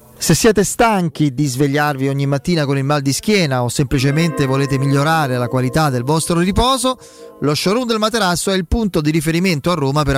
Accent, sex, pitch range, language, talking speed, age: native, male, 135-185 Hz, Italian, 195 wpm, 30-49